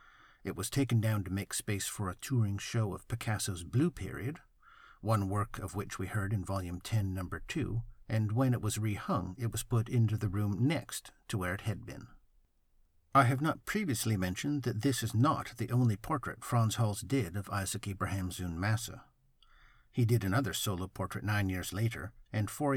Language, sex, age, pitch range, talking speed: English, male, 50-69, 100-130 Hz, 190 wpm